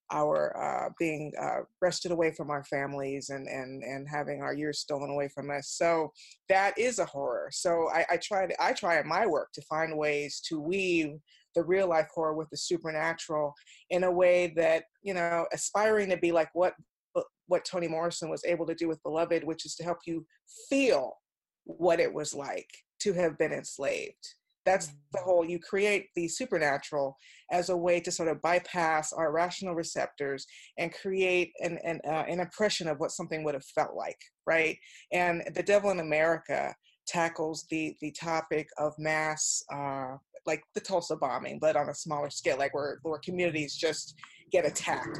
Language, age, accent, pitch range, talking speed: English, 30-49, American, 155-180 Hz, 180 wpm